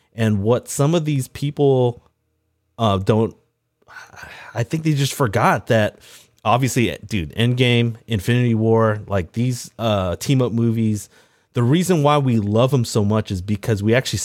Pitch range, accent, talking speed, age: 100-130 Hz, American, 155 wpm, 30-49